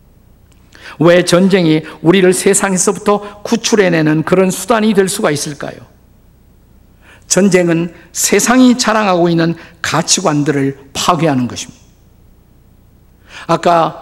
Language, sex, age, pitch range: Korean, male, 50-69, 145-190 Hz